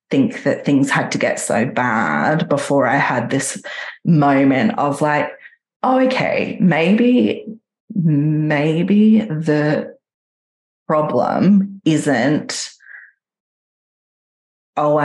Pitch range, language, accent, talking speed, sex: 135-165 Hz, English, Australian, 95 wpm, female